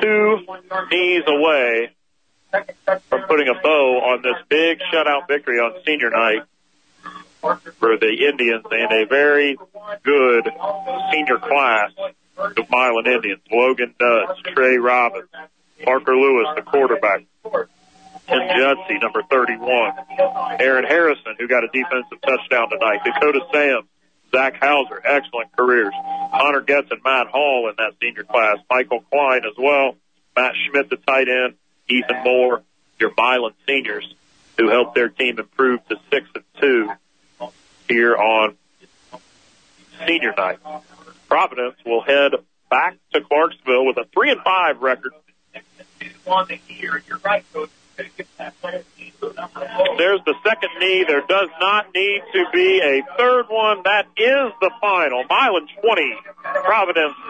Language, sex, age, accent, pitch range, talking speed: English, male, 40-59, American, 130-200 Hz, 130 wpm